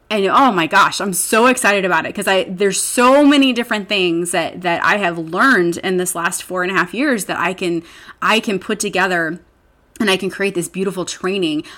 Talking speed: 220 wpm